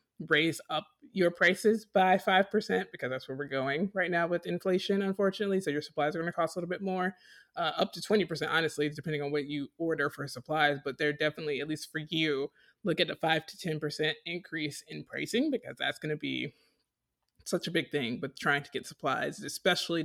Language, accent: English, American